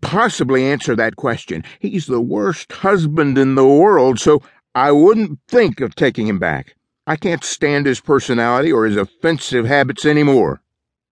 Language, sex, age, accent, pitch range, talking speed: English, male, 50-69, American, 110-150 Hz, 155 wpm